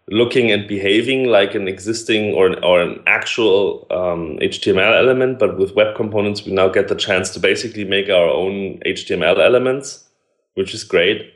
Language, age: English, 30-49